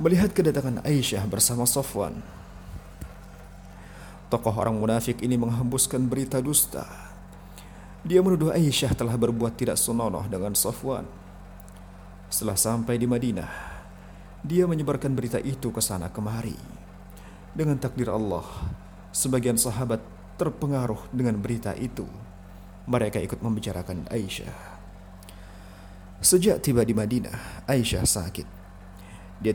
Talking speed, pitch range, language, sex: 105 wpm, 95-130 Hz, Indonesian, male